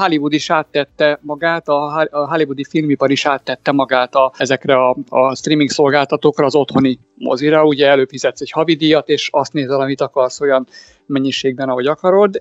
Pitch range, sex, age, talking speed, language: 135-155 Hz, male, 50-69, 155 wpm, Hungarian